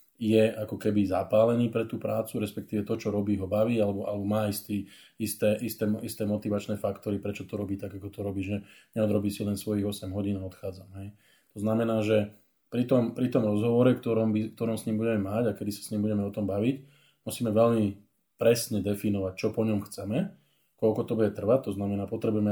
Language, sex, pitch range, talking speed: Slovak, male, 105-115 Hz, 210 wpm